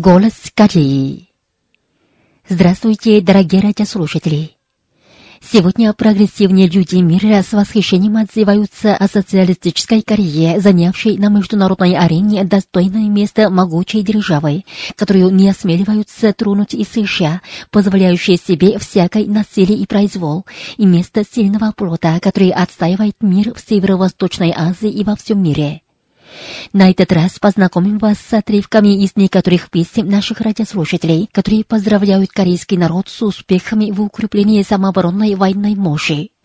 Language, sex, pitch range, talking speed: Russian, female, 180-210 Hz, 120 wpm